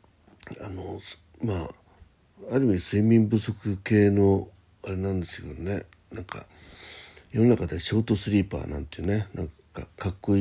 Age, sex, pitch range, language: 60-79, male, 85-105 Hz, Japanese